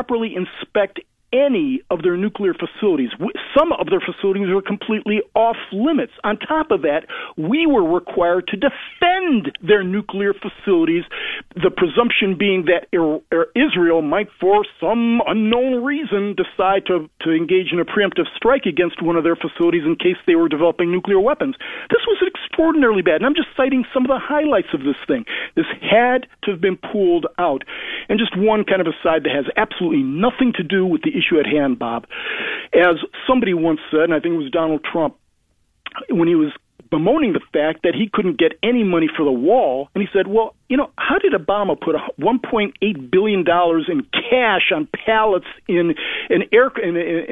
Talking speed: 180 wpm